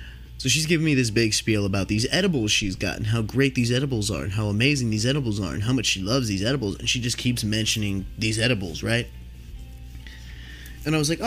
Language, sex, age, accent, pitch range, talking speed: English, male, 20-39, American, 90-130 Hz, 230 wpm